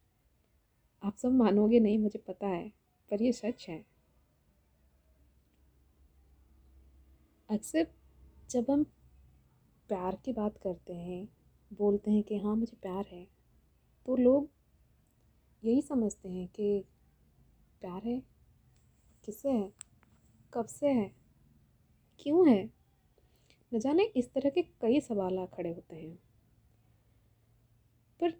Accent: native